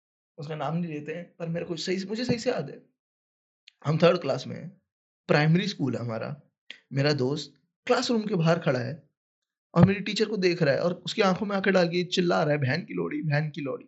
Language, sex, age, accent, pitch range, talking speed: Hindi, male, 20-39, native, 170-220 Hz, 175 wpm